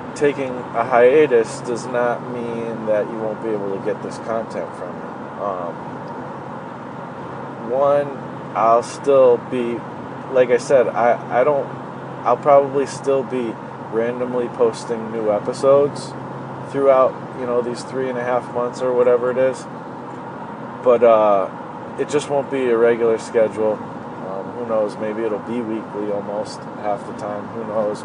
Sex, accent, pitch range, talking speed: male, American, 110-135 Hz, 150 wpm